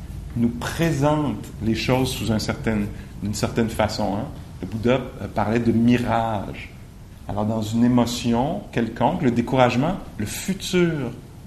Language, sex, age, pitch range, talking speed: English, male, 50-69, 105-130 Hz, 125 wpm